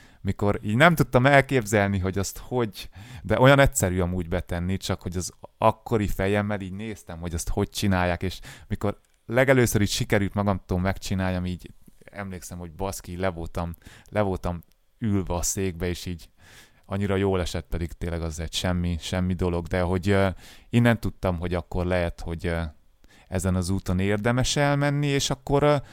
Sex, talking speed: male, 155 wpm